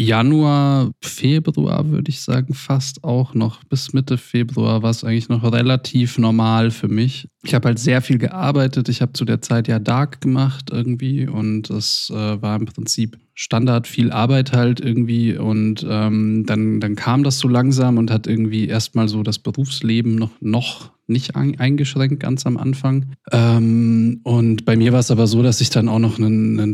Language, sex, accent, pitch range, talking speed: German, male, German, 110-125 Hz, 180 wpm